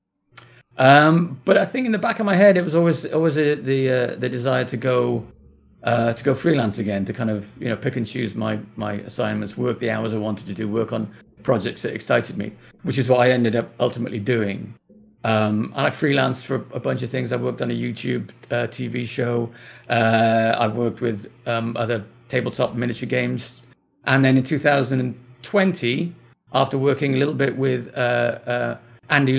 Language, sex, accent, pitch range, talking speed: English, male, British, 115-135 Hz, 200 wpm